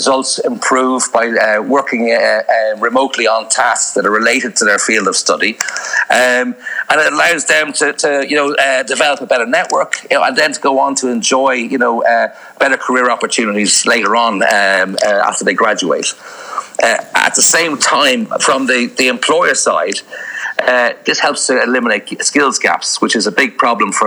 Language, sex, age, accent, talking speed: English, male, 40-59, Irish, 190 wpm